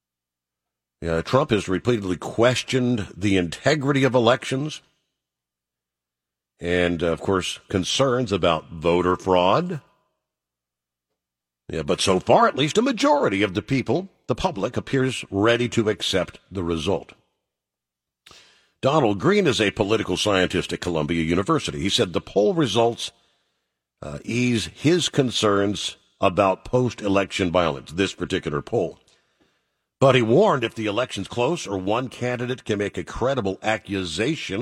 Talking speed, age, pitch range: 130 wpm, 50-69, 75-120 Hz